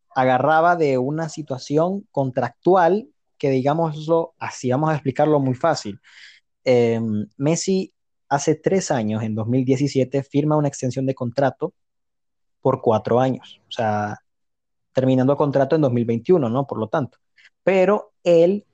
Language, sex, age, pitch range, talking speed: Spanish, male, 20-39, 120-155 Hz, 130 wpm